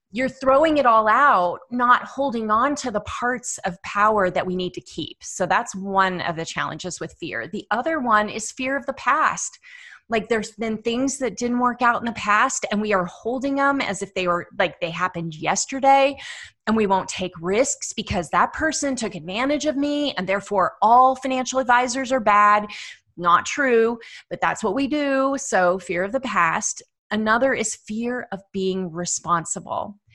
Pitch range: 190-250 Hz